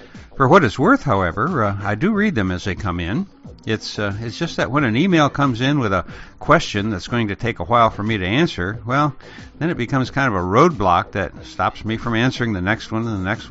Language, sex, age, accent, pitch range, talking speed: English, male, 60-79, American, 95-130 Hz, 250 wpm